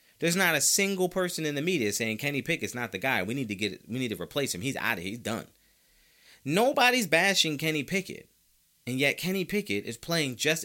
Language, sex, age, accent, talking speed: English, male, 30-49, American, 220 wpm